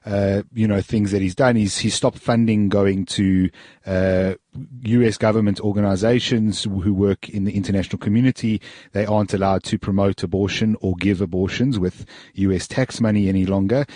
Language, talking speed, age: English, 200 wpm, 30-49